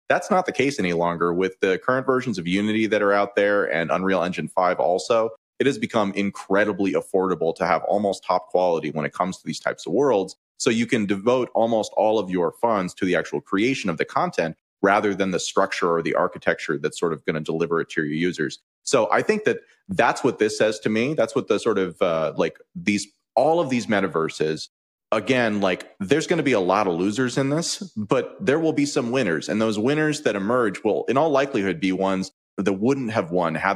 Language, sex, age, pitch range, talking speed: English, male, 30-49, 95-130 Hz, 230 wpm